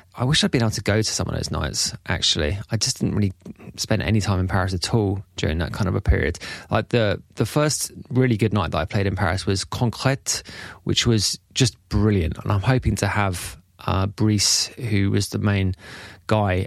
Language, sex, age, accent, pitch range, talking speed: English, male, 20-39, British, 100-130 Hz, 215 wpm